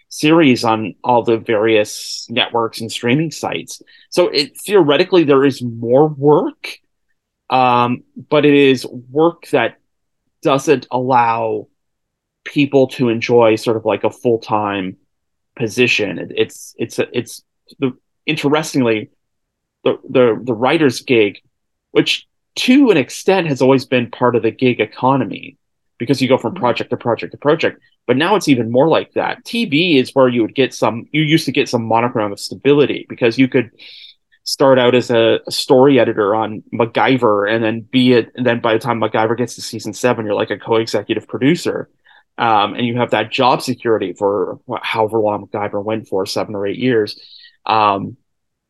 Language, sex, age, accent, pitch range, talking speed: English, male, 30-49, American, 110-135 Hz, 170 wpm